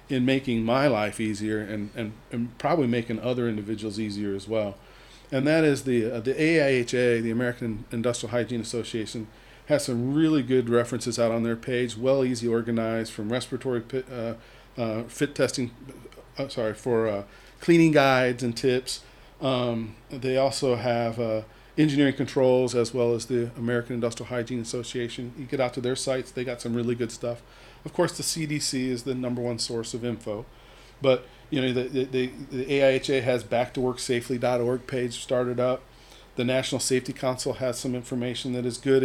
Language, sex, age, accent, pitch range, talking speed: English, male, 40-59, American, 120-135 Hz, 175 wpm